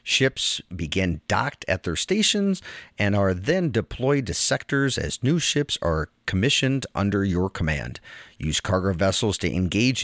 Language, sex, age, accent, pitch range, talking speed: English, male, 40-59, American, 90-135 Hz, 150 wpm